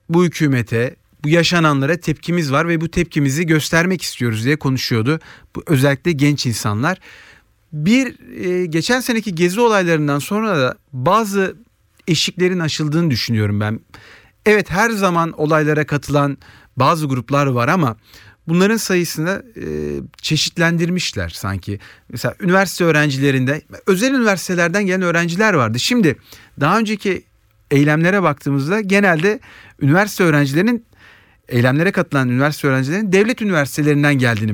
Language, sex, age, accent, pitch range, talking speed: Turkish, male, 40-59, native, 125-180 Hz, 115 wpm